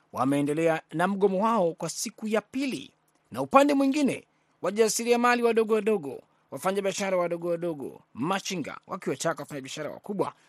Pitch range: 150-210 Hz